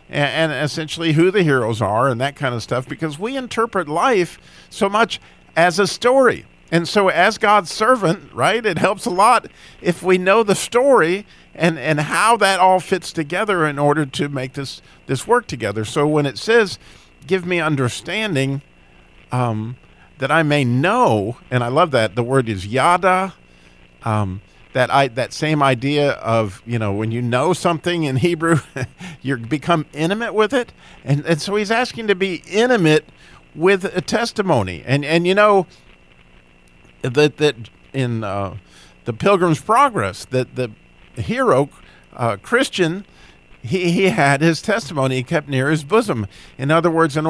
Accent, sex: American, male